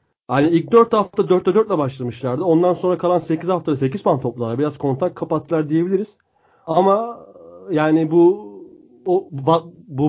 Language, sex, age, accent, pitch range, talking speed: Turkish, male, 30-49, native, 140-175 Hz, 150 wpm